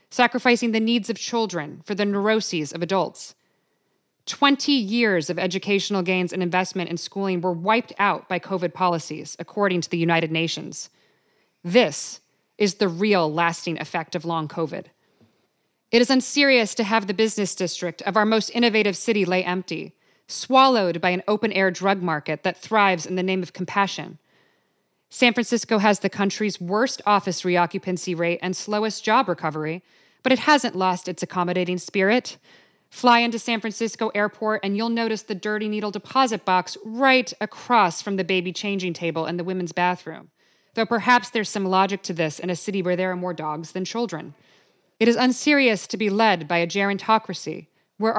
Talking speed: 170 wpm